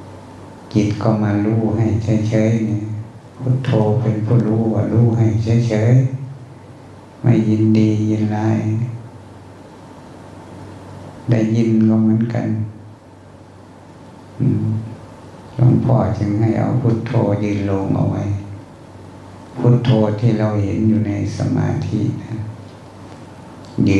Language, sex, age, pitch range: Thai, male, 60-79, 100-120 Hz